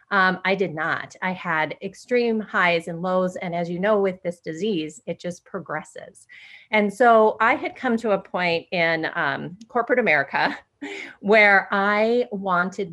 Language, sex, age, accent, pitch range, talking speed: English, female, 30-49, American, 165-205 Hz, 165 wpm